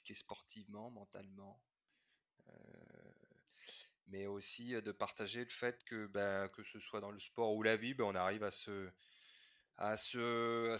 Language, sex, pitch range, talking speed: French, male, 100-120 Hz, 155 wpm